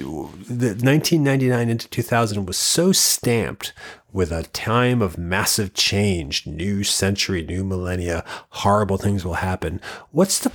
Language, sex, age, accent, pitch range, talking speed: English, male, 30-49, American, 95-125 Hz, 130 wpm